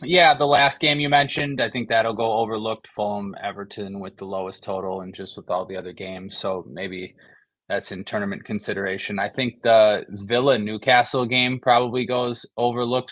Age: 20-39